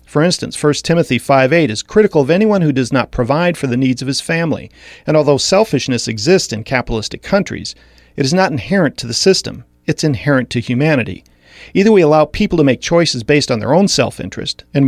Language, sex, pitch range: English, male, 120-170 Hz